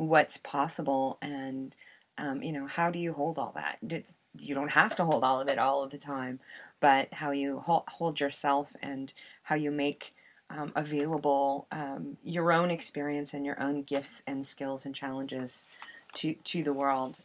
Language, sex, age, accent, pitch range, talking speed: English, female, 30-49, American, 140-160 Hz, 185 wpm